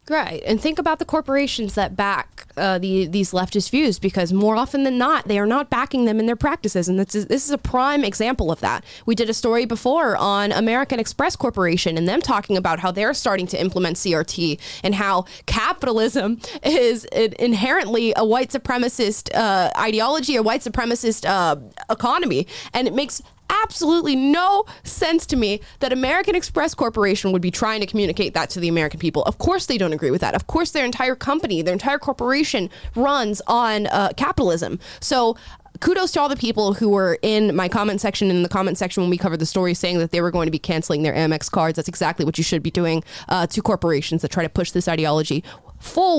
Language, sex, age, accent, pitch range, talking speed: English, female, 20-39, American, 180-255 Hz, 205 wpm